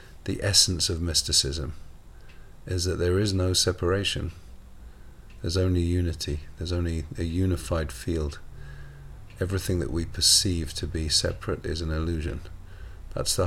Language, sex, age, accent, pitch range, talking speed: English, male, 40-59, British, 80-95 Hz, 135 wpm